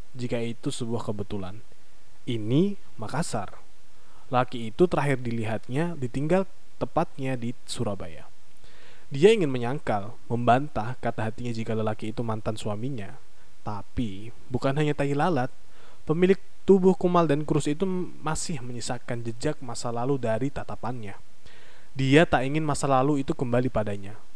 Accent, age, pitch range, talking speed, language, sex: native, 20-39, 115-140 Hz, 125 wpm, Indonesian, male